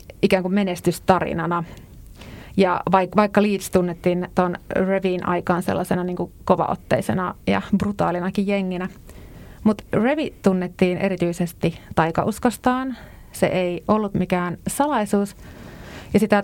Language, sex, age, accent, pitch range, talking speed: Finnish, female, 30-49, native, 175-210 Hz, 100 wpm